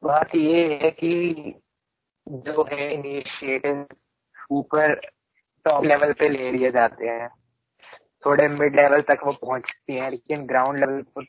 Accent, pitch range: native, 125-145 Hz